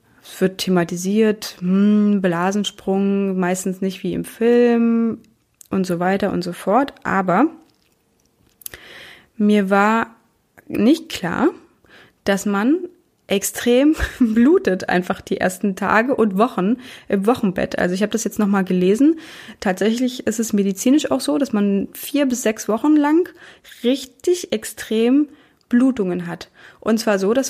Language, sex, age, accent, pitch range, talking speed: German, female, 20-39, German, 190-240 Hz, 135 wpm